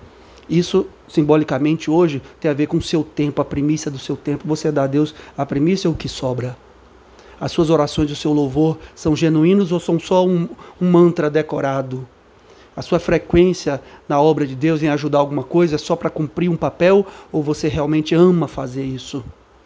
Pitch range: 135-165 Hz